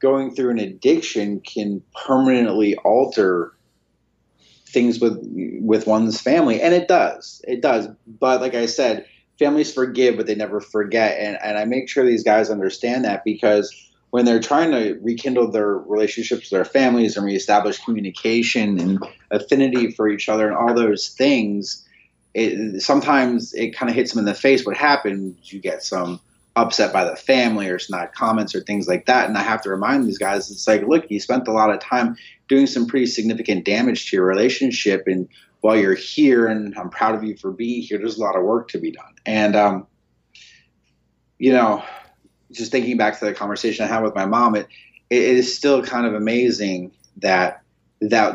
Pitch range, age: 105-125 Hz, 30-49